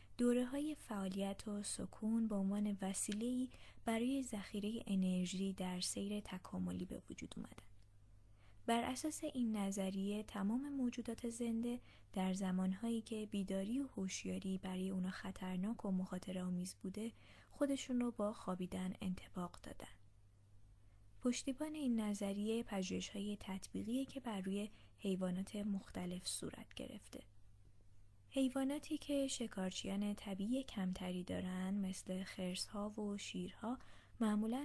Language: Persian